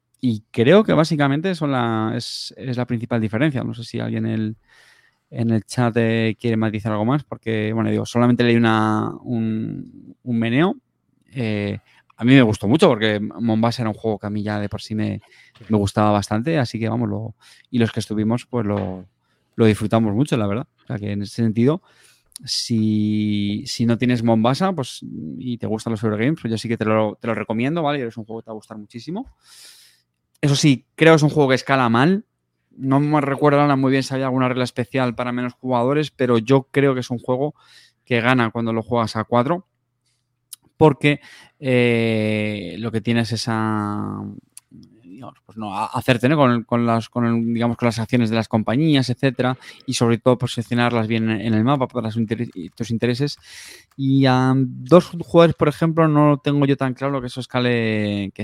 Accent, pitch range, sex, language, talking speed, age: Spanish, 110-130 Hz, male, Spanish, 200 wpm, 20-39